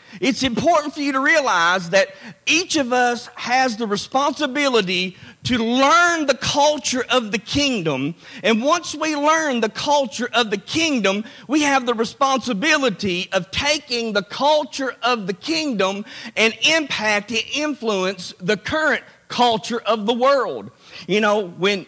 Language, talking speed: English, 145 wpm